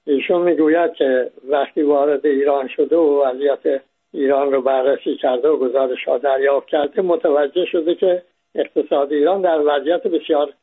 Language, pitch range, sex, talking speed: English, 145-180 Hz, male, 145 wpm